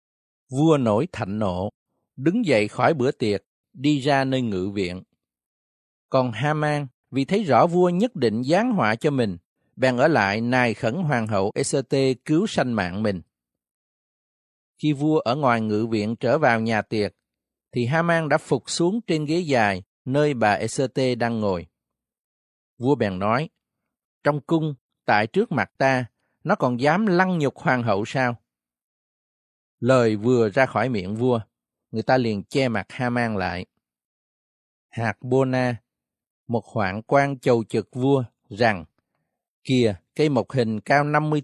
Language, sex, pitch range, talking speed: Vietnamese, male, 105-145 Hz, 155 wpm